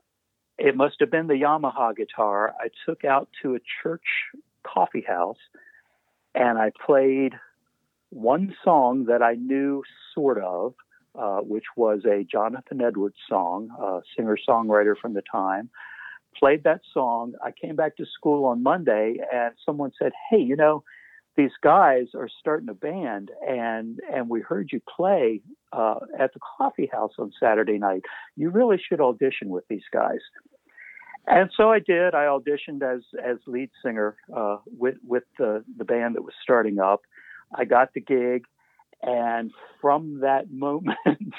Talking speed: 155 wpm